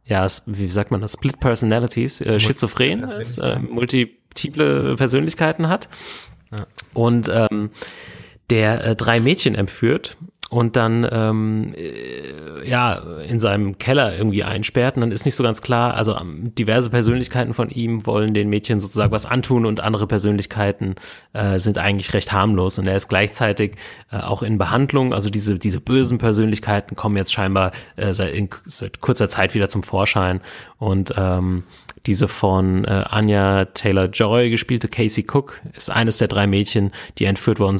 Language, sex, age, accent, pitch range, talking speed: German, male, 30-49, German, 100-115 Hz, 155 wpm